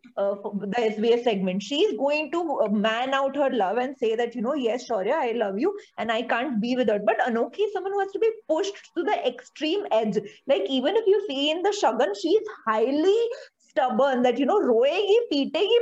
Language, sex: English, female